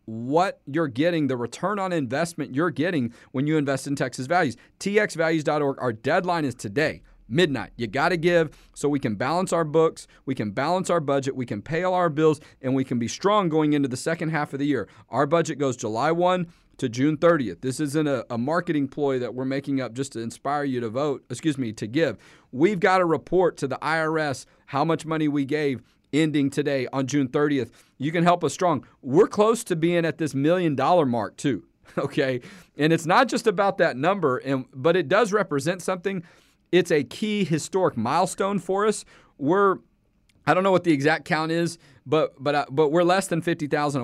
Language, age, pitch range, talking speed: English, 40-59, 135-175 Hz, 205 wpm